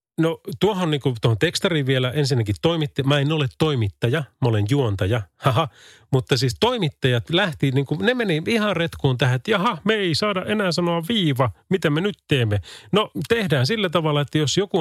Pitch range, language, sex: 105-150 Hz, Finnish, male